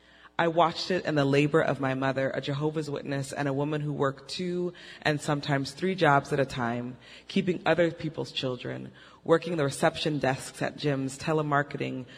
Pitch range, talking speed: 135-160 Hz, 175 wpm